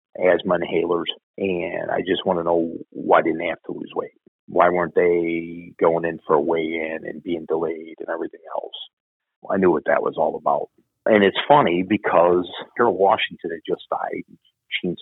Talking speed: 185 wpm